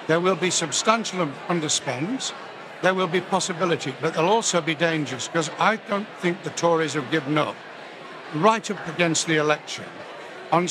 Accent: British